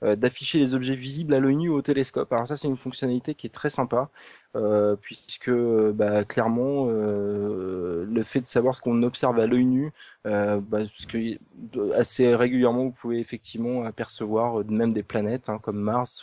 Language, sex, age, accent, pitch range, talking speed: French, male, 20-39, French, 105-125 Hz, 180 wpm